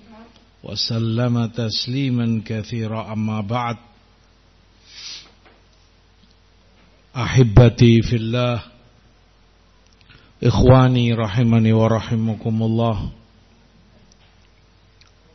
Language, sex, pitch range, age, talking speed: Indonesian, male, 100-120 Hz, 50-69, 45 wpm